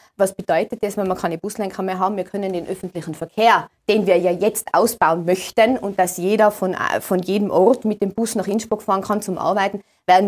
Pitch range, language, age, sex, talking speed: 180-210 Hz, German, 20-39, female, 215 wpm